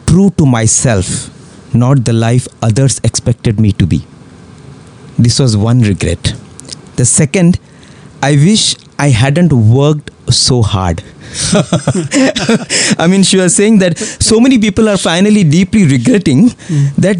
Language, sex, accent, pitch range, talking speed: English, male, Indian, 130-175 Hz, 135 wpm